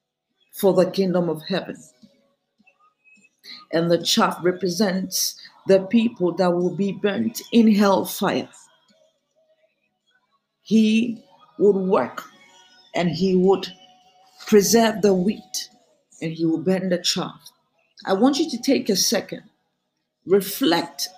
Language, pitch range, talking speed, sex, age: English, 190-265 Hz, 115 wpm, female, 50-69